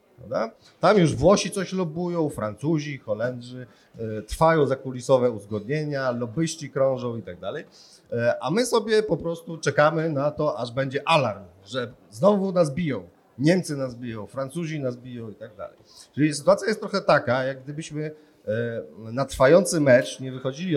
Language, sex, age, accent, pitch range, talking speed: Polish, male, 40-59, native, 125-160 Hz, 155 wpm